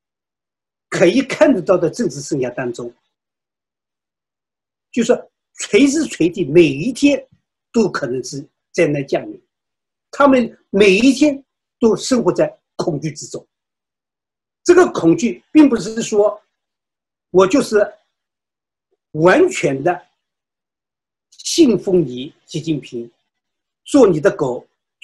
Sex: male